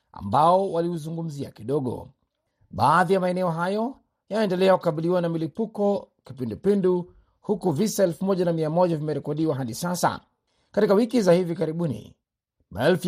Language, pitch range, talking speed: Swahili, 155-190 Hz, 110 wpm